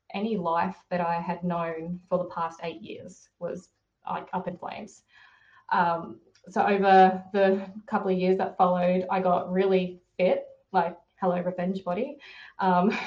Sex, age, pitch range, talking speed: female, 20-39, 180-195 Hz, 155 wpm